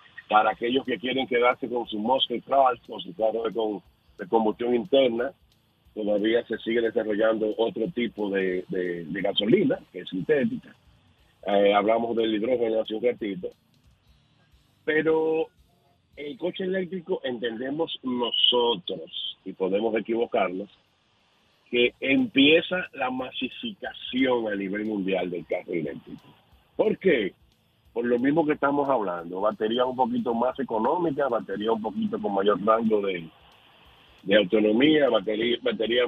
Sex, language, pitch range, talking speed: male, Spanish, 110-155 Hz, 130 wpm